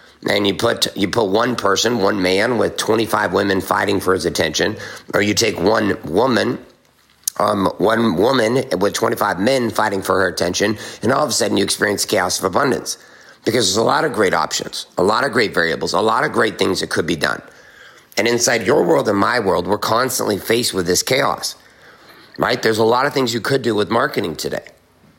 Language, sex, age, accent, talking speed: English, male, 50-69, American, 205 wpm